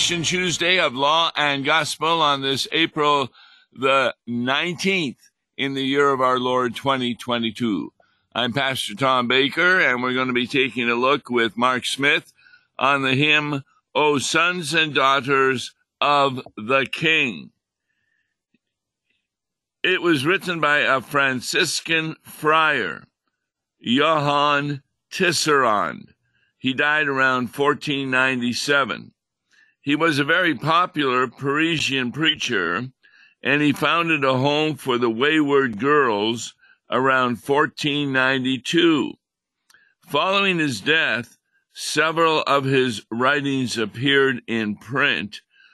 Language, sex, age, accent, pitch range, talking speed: English, male, 60-79, American, 130-155 Hz, 110 wpm